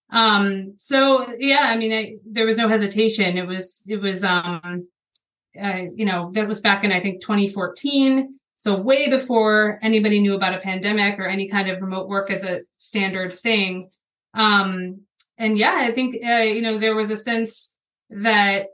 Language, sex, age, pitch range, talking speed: English, female, 30-49, 195-220 Hz, 180 wpm